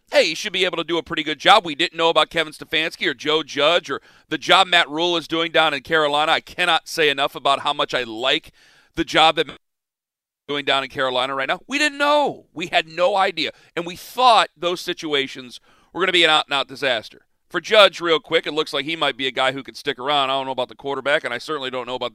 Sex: male